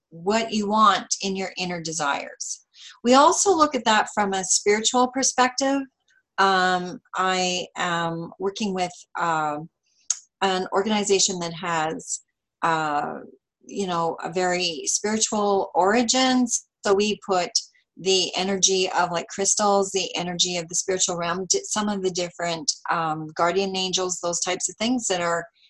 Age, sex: 40-59, female